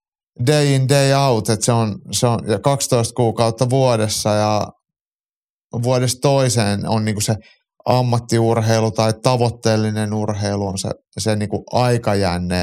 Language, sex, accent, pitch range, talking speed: Finnish, male, native, 105-125 Hz, 130 wpm